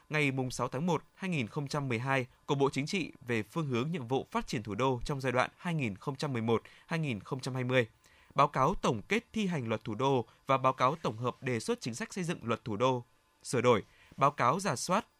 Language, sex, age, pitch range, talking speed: Vietnamese, male, 20-39, 125-165 Hz, 195 wpm